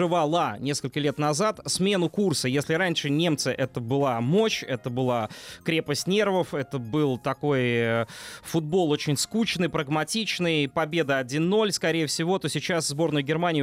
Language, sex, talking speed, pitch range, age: Russian, male, 135 wpm, 140-175 Hz, 20-39